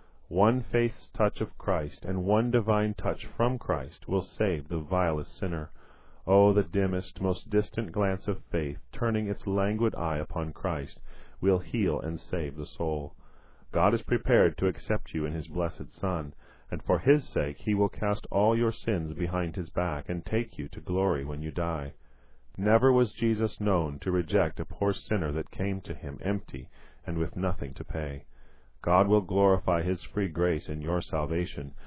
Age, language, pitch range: 40-59, English, 75-100 Hz